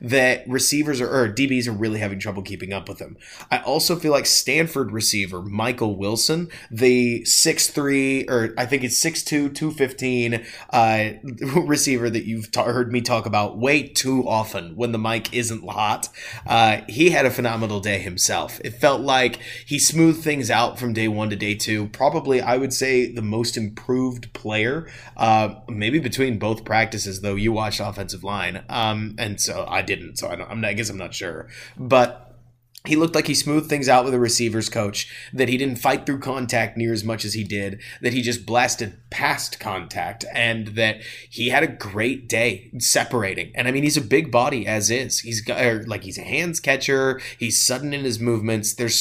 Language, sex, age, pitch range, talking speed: English, male, 20-39, 110-135 Hz, 190 wpm